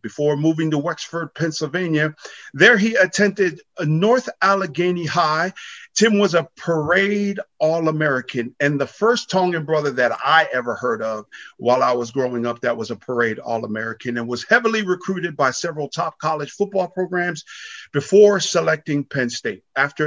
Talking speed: 155 wpm